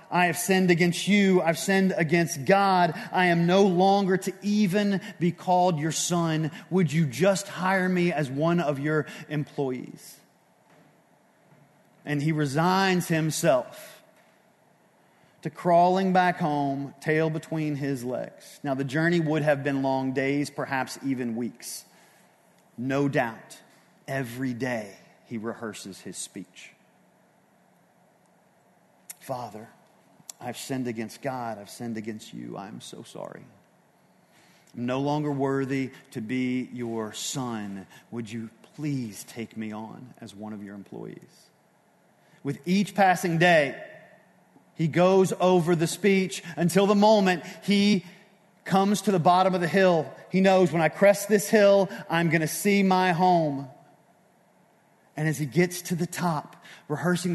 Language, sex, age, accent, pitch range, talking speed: English, male, 30-49, American, 135-185 Hz, 140 wpm